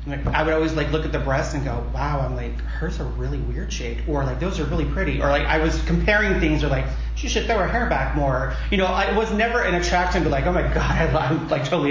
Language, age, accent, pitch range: English, 30-49, American, 120-150 Hz